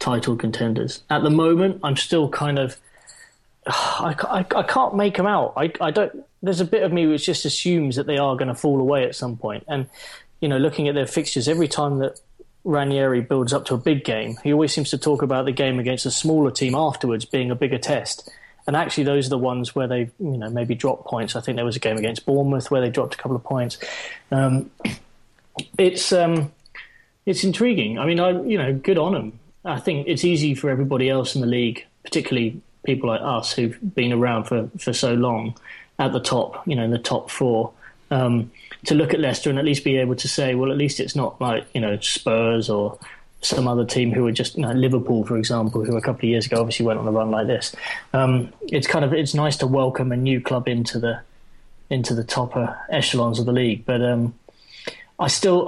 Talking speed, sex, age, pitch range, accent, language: 230 wpm, male, 20-39, 120-145 Hz, British, English